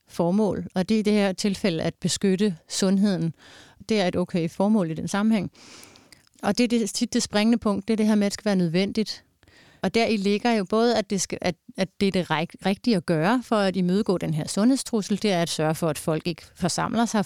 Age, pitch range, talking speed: 30-49, 175-220 Hz, 240 wpm